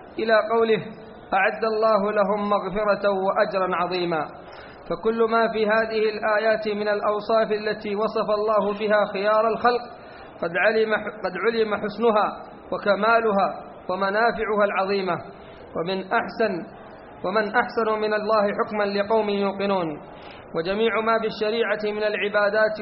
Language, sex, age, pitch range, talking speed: Arabic, male, 40-59, 205-220 Hz, 115 wpm